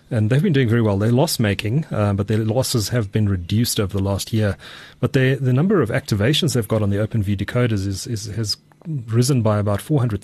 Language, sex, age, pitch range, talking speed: English, male, 30-49, 100-120 Hz, 250 wpm